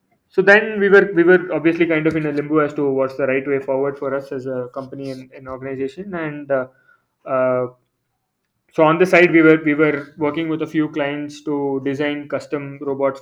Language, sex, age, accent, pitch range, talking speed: English, male, 20-39, Indian, 135-155 Hz, 215 wpm